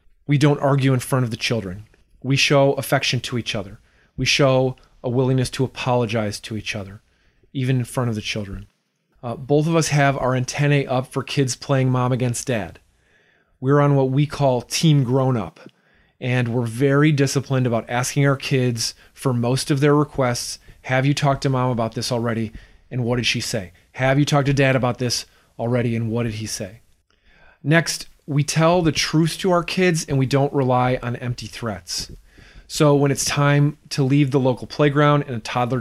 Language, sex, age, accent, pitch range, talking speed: English, male, 30-49, American, 120-150 Hz, 195 wpm